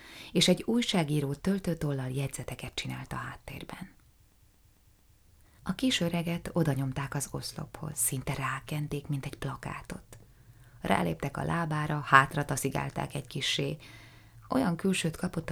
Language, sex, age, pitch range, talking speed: Hungarian, female, 20-39, 115-155 Hz, 115 wpm